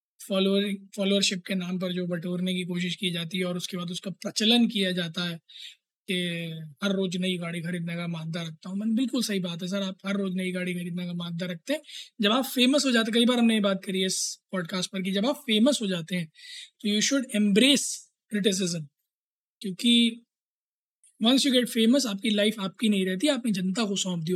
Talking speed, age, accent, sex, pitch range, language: 220 wpm, 20-39, native, male, 180-225 Hz, Hindi